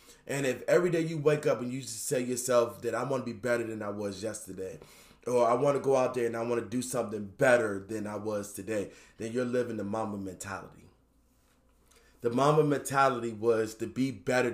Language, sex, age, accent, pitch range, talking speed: English, male, 20-39, American, 110-135 Hz, 220 wpm